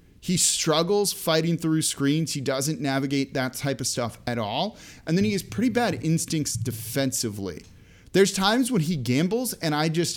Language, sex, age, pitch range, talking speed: English, male, 30-49, 115-165 Hz, 175 wpm